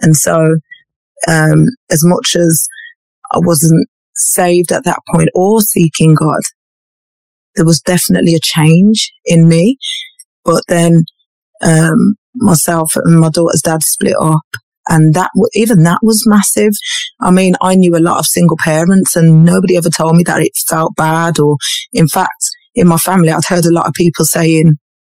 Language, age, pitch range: English, 20-39, 160-195 Hz